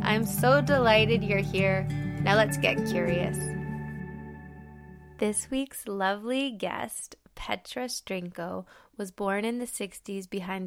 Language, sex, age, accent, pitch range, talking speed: English, female, 20-39, American, 175-205 Hz, 120 wpm